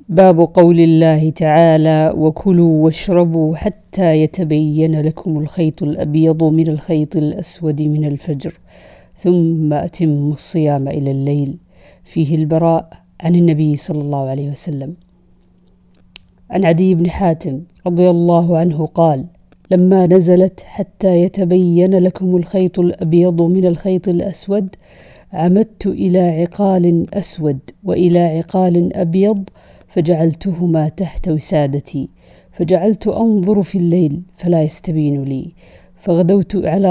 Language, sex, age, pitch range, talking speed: Arabic, female, 50-69, 155-185 Hz, 105 wpm